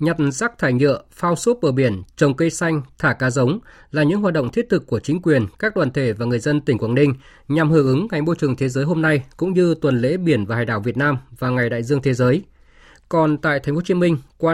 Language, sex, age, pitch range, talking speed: Vietnamese, male, 20-39, 130-165 Hz, 275 wpm